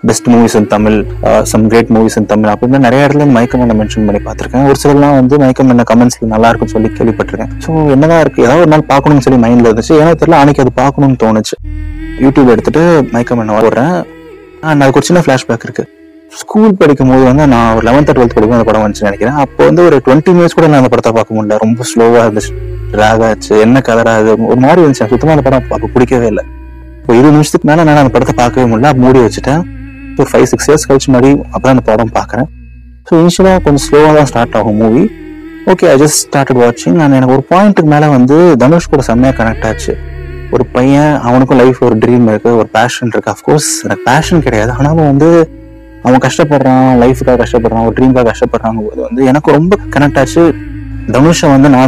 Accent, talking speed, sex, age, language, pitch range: native, 120 wpm, male, 20-39, Tamil, 110-145 Hz